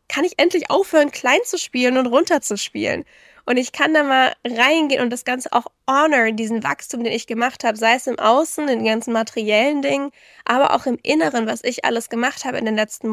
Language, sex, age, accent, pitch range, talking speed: German, female, 10-29, German, 230-280 Hz, 210 wpm